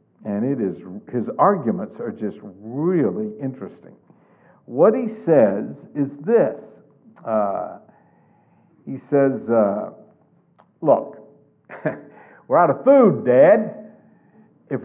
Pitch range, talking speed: 165-220 Hz, 100 wpm